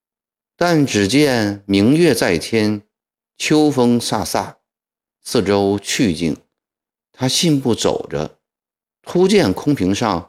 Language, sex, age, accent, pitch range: Chinese, male, 50-69, native, 95-145 Hz